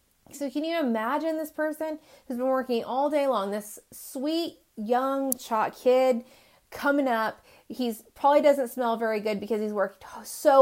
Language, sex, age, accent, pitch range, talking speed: English, female, 30-49, American, 190-260 Hz, 165 wpm